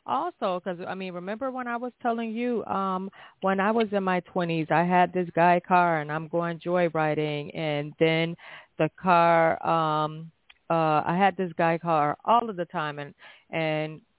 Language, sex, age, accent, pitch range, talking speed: English, female, 40-59, American, 165-220 Hz, 180 wpm